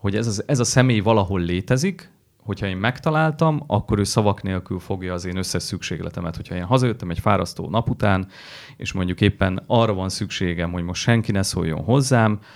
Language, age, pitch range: Hungarian, 30-49, 90-115 Hz